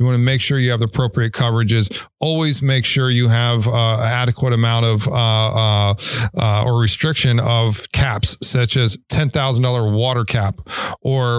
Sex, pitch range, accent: male, 120-145 Hz, American